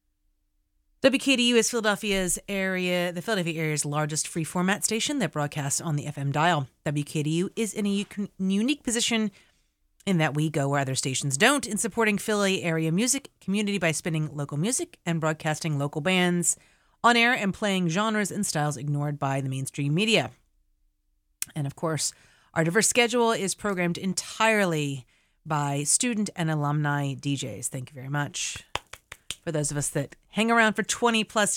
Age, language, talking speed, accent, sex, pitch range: 30-49, English, 160 wpm, American, female, 150-215 Hz